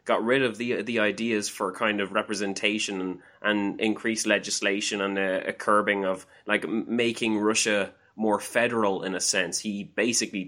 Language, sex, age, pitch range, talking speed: English, male, 20-39, 100-115 Hz, 170 wpm